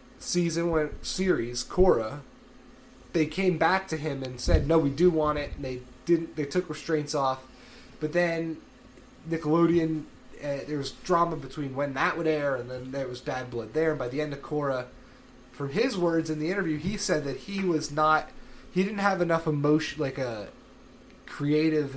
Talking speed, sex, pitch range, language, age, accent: 185 wpm, male, 130-165 Hz, English, 20-39, American